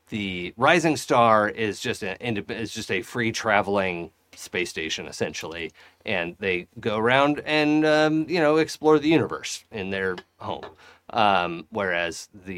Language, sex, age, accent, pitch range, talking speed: English, male, 30-49, American, 95-145 Hz, 145 wpm